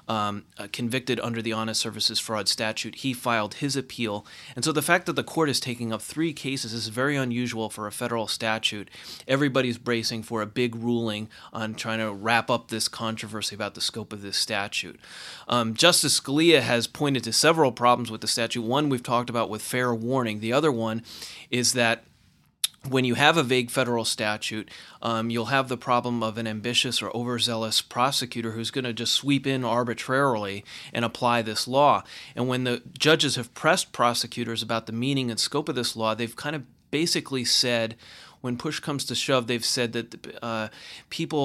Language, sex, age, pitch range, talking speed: English, male, 30-49, 110-130 Hz, 195 wpm